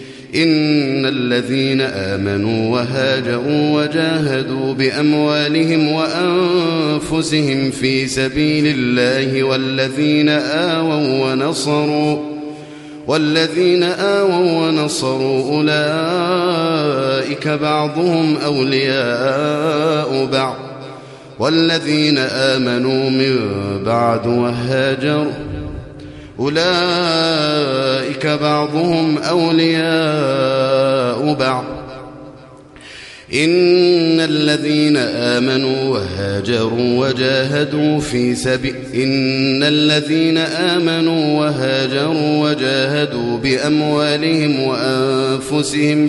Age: 30-49